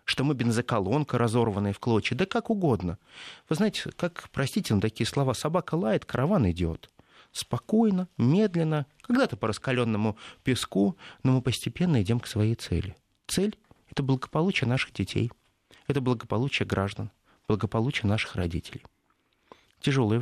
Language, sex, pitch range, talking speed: Russian, male, 105-145 Hz, 135 wpm